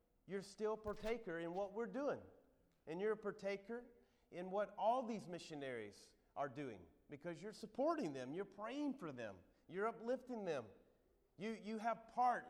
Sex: male